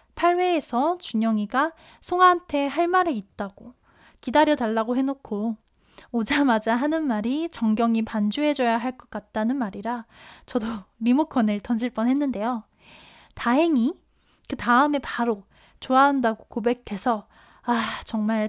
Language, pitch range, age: Korean, 220-280 Hz, 10-29